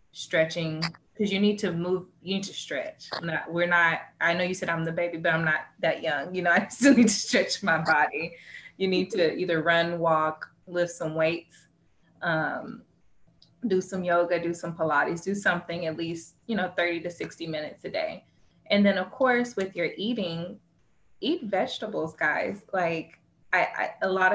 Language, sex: English, female